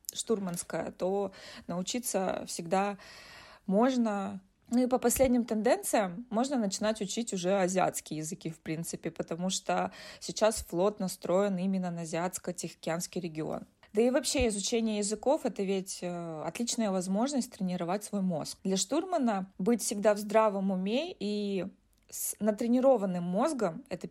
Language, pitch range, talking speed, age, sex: Russian, 190-235 Hz, 130 wpm, 20-39, female